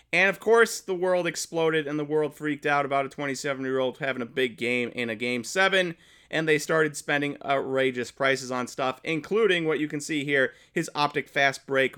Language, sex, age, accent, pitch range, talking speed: English, male, 30-49, American, 115-155 Hz, 200 wpm